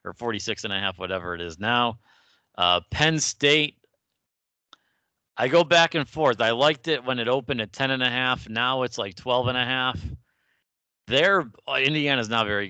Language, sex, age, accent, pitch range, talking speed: English, male, 40-59, American, 95-120 Hz, 140 wpm